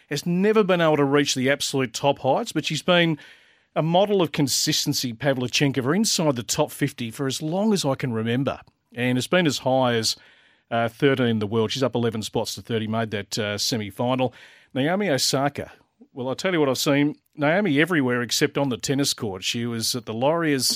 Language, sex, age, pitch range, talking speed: English, male, 40-59, 125-155 Hz, 205 wpm